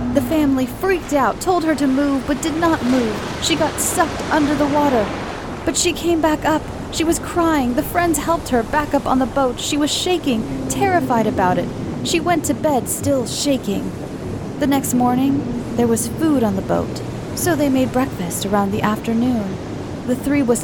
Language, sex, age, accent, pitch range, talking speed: English, female, 30-49, American, 235-295 Hz, 190 wpm